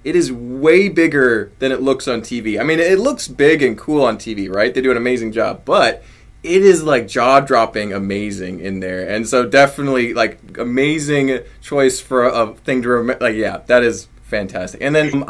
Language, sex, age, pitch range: English, male, 20-39, 115-145 Hz